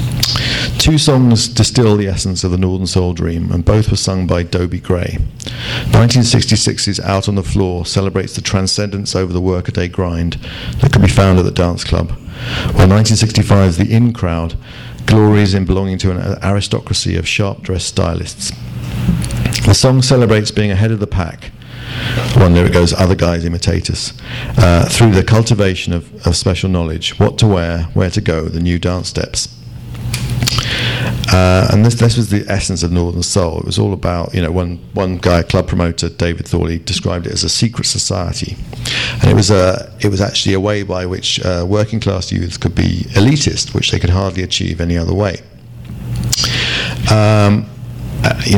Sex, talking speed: male, 180 wpm